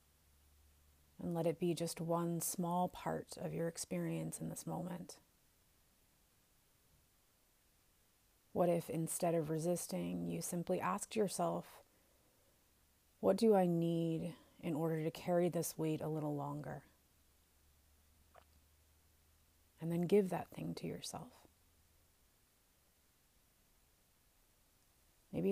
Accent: American